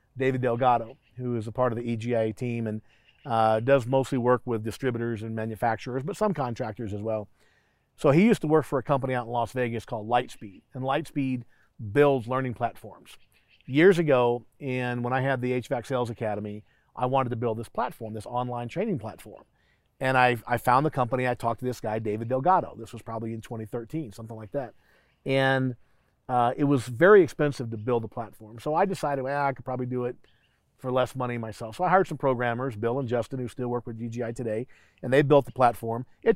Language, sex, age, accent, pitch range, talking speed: English, male, 40-59, American, 115-135 Hz, 210 wpm